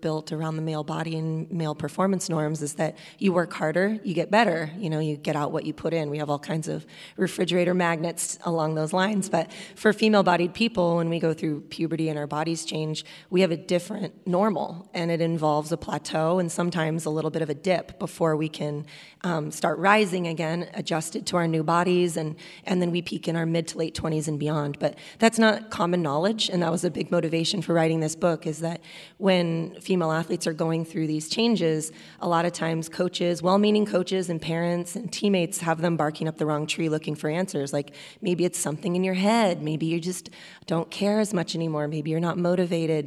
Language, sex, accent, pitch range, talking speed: English, female, American, 155-180 Hz, 220 wpm